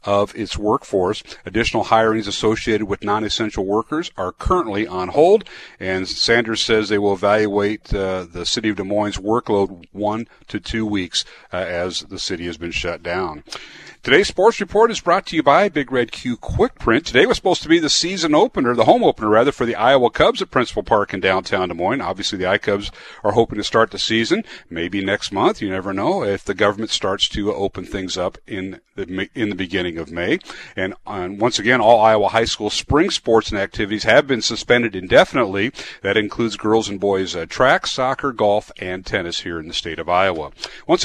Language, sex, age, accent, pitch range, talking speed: English, male, 40-59, American, 100-145 Hz, 200 wpm